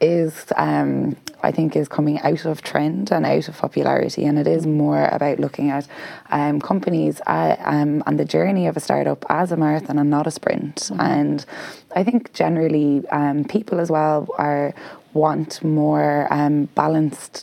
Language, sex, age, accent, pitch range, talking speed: English, female, 20-39, Irish, 145-155 Hz, 170 wpm